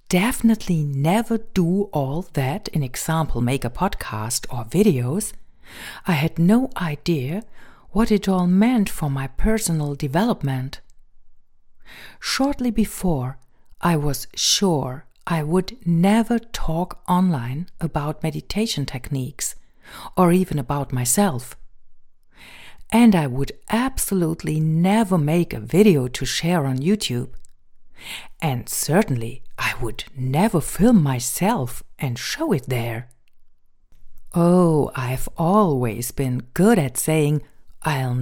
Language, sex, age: German, female, 50-69